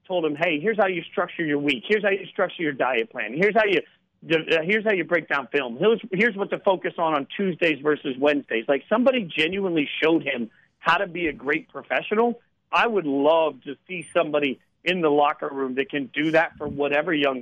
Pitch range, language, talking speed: 145-190 Hz, English, 215 wpm